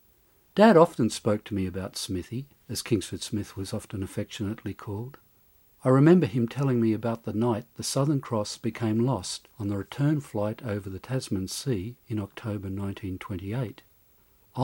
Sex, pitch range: male, 100-140 Hz